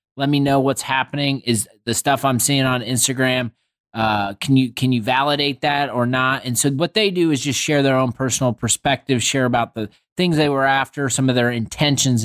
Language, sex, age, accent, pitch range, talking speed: English, male, 30-49, American, 125-150 Hz, 210 wpm